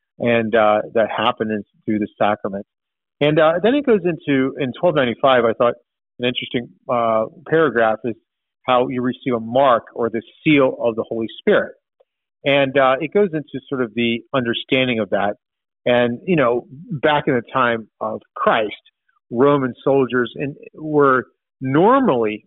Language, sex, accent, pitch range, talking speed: English, male, American, 120-145 Hz, 160 wpm